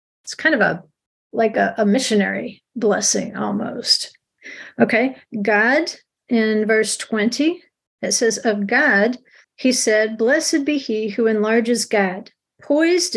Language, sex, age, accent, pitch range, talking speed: English, female, 50-69, American, 220-270 Hz, 130 wpm